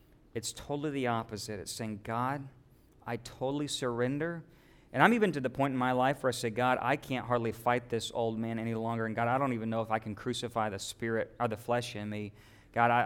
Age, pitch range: 40-59, 120-160 Hz